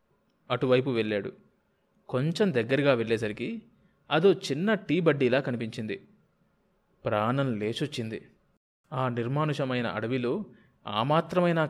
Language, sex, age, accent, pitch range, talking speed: Telugu, male, 20-39, native, 115-160 Hz, 80 wpm